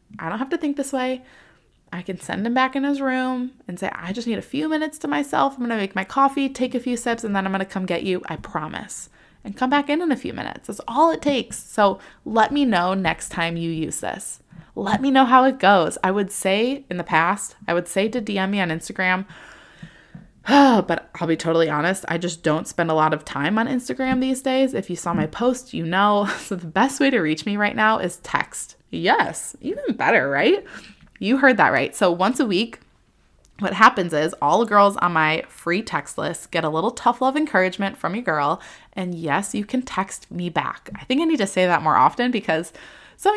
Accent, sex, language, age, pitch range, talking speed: American, female, English, 20-39, 175-250 Hz, 235 wpm